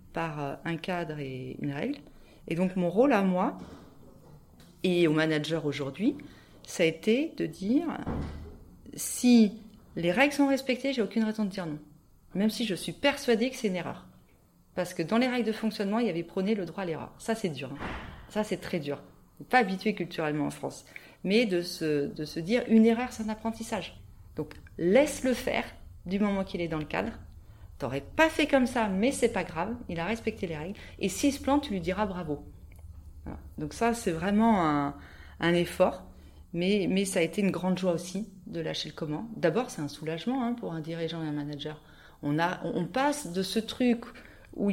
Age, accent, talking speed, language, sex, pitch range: 40-59, French, 210 wpm, French, female, 160-230 Hz